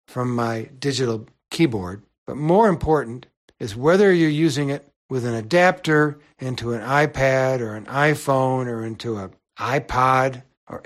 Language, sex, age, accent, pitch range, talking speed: English, male, 60-79, American, 120-150 Hz, 145 wpm